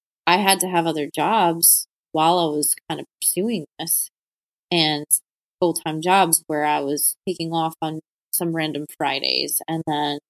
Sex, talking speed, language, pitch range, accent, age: female, 155 wpm, English, 150-175 Hz, American, 20-39